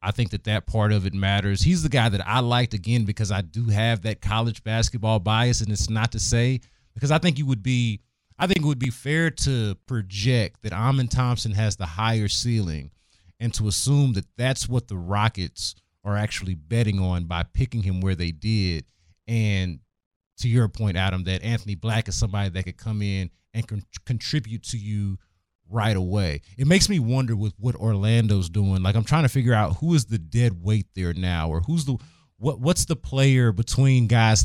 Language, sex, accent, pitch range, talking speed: English, male, American, 100-130 Hz, 205 wpm